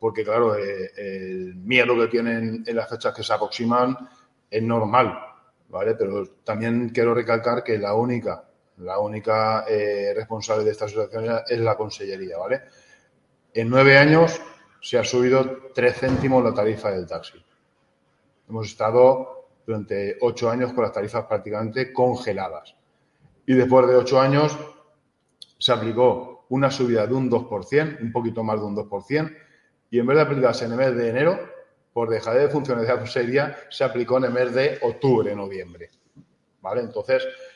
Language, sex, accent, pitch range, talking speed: Spanish, male, Spanish, 115-135 Hz, 160 wpm